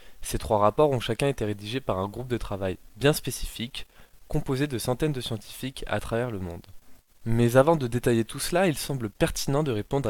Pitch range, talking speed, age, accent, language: 110-140 Hz, 200 wpm, 20-39, French, French